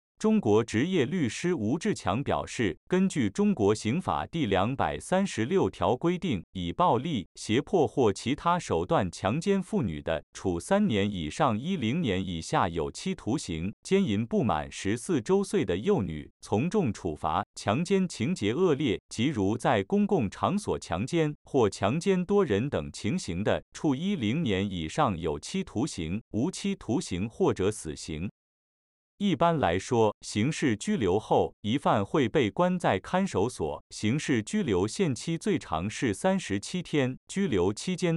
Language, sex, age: Chinese, male, 50-69